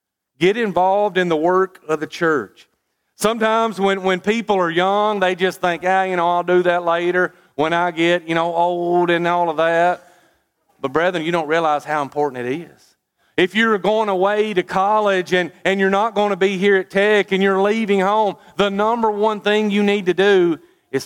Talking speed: 205 wpm